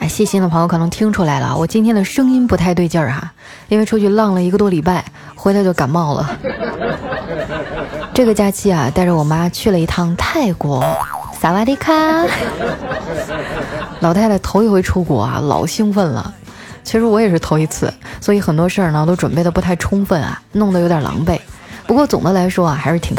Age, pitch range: 20-39, 165-210 Hz